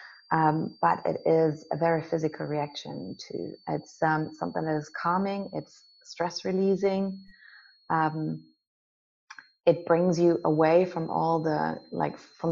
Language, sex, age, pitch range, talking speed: English, female, 30-49, 155-175 Hz, 130 wpm